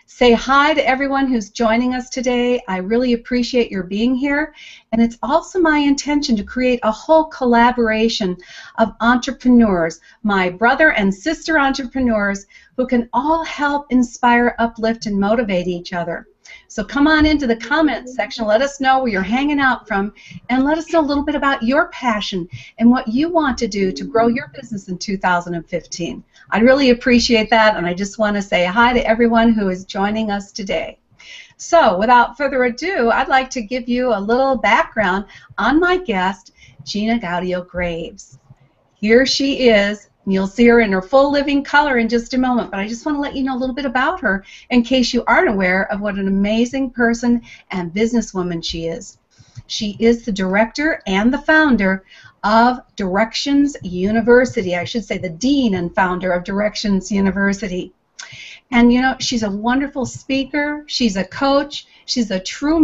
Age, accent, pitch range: 50-69, American, 200-265 Hz